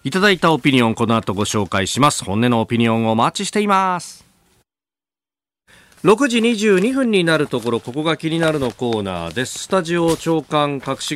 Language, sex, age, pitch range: Japanese, male, 40-59, 105-160 Hz